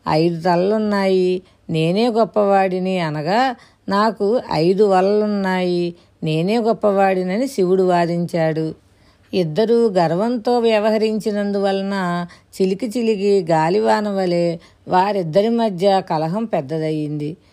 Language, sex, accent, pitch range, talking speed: Telugu, female, native, 170-215 Hz, 75 wpm